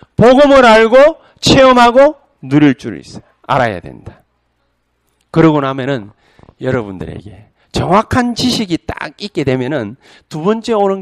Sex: male